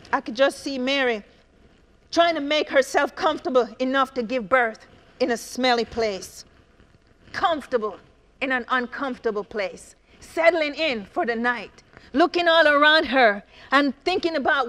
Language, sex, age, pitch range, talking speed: English, female, 40-59, 245-325 Hz, 145 wpm